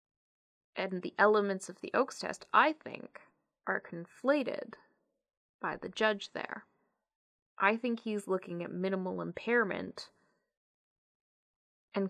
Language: English